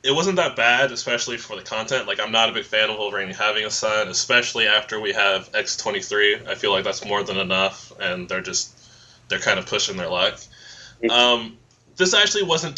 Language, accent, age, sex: English, American, 20-39, male